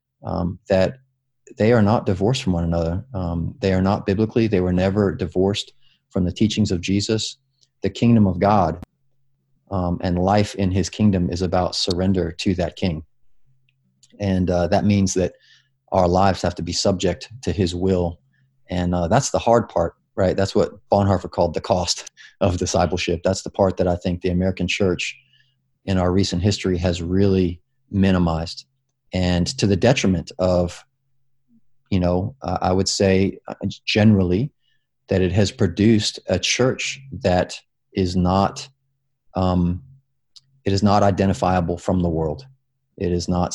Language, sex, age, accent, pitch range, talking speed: English, male, 30-49, American, 90-110 Hz, 160 wpm